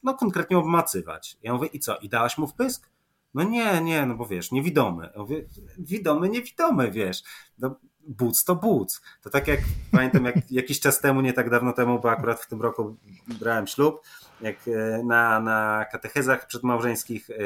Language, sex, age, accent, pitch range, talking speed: Polish, male, 30-49, native, 120-155 Hz, 180 wpm